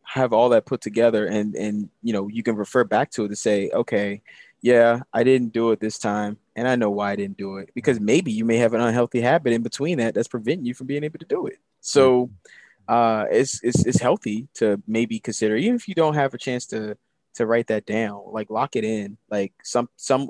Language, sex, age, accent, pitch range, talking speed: English, male, 20-39, American, 105-125 Hz, 240 wpm